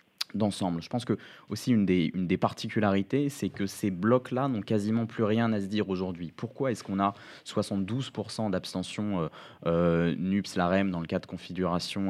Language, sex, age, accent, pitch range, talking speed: French, male, 20-39, French, 95-115 Hz, 175 wpm